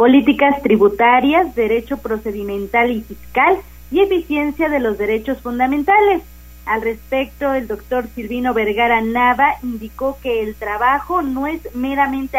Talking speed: 125 wpm